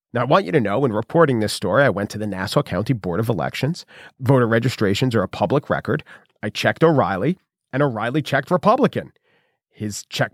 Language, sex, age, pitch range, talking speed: English, male, 40-59, 120-180 Hz, 195 wpm